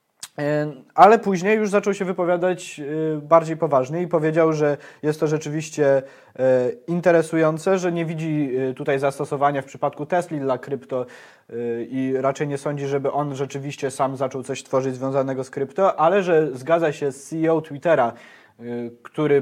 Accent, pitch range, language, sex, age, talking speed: native, 130-160 Hz, Polish, male, 20-39, 145 wpm